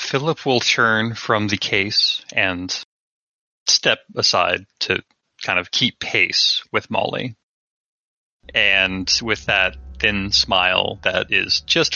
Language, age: English, 30-49